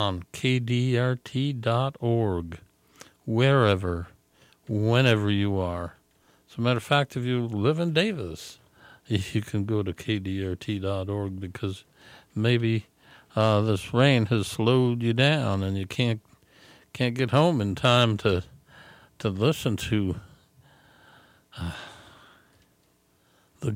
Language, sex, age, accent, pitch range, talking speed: English, male, 60-79, American, 95-120 Hz, 110 wpm